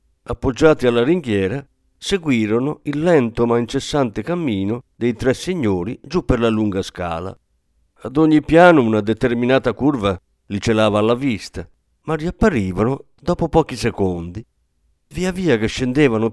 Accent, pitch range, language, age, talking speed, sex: native, 95-140 Hz, Italian, 50-69, 130 wpm, male